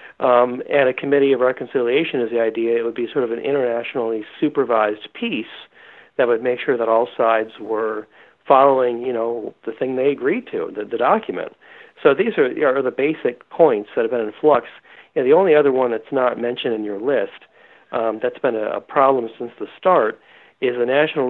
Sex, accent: male, American